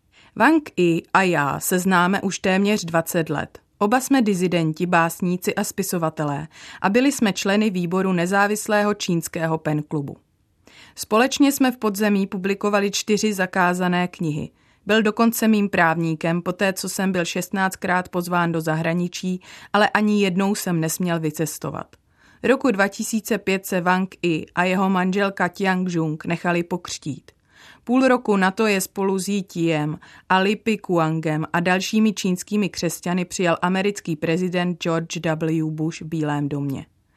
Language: Czech